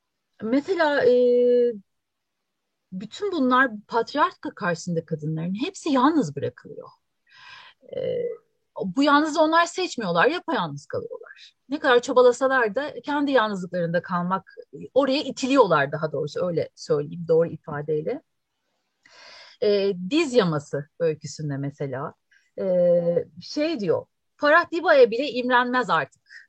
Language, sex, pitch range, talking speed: Turkish, female, 190-295 Hz, 100 wpm